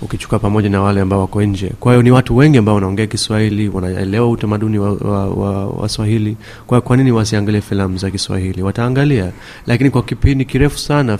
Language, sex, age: Swahili, male, 30-49